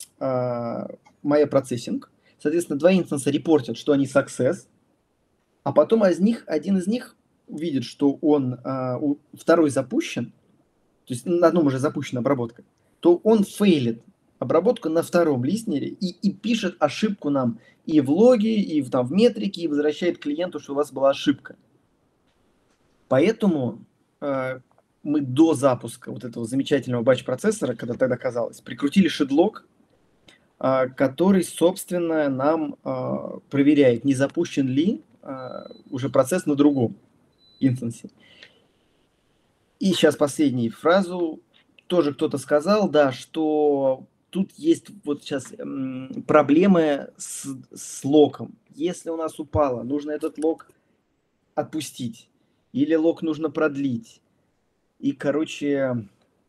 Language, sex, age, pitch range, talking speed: Russian, male, 20-39, 135-170 Hz, 115 wpm